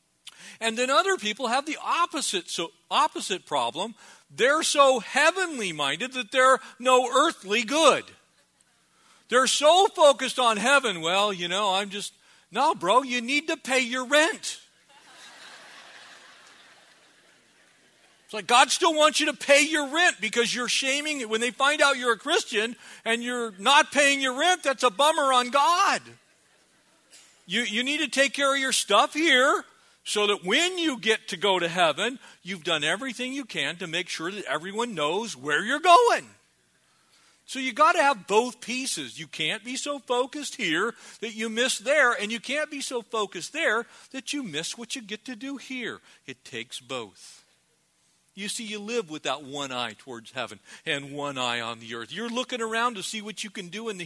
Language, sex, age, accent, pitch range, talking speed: English, male, 40-59, American, 200-280 Hz, 180 wpm